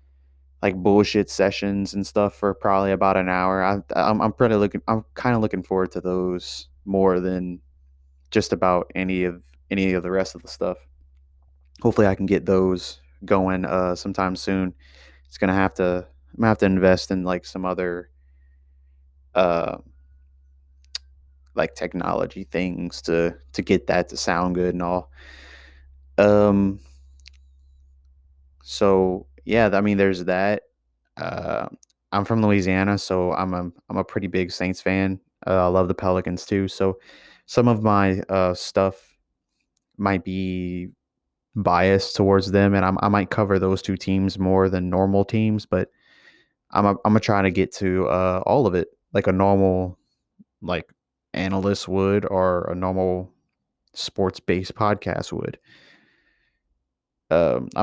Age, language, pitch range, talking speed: 20-39, English, 70-100 Hz, 150 wpm